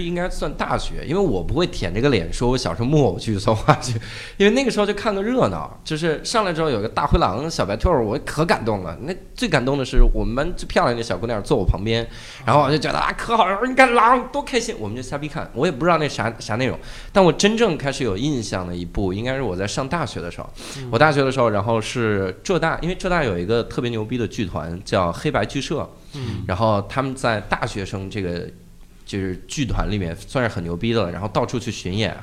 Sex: male